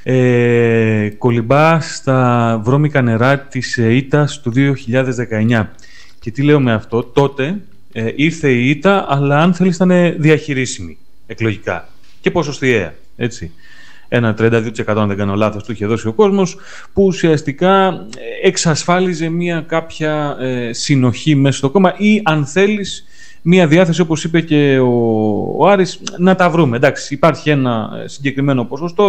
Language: Greek